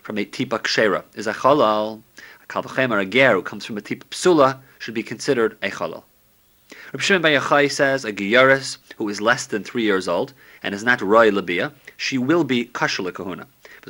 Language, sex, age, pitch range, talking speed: English, male, 30-49, 105-135 Hz, 200 wpm